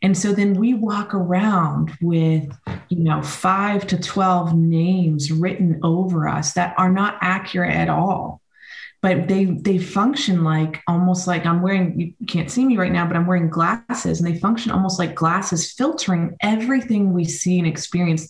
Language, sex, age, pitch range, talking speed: English, female, 20-39, 170-210 Hz, 175 wpm